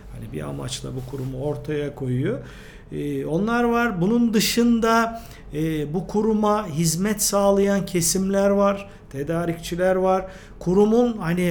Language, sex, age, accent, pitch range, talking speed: Turkish, male, 50-69, native, 150-200 Hz, 120 wpm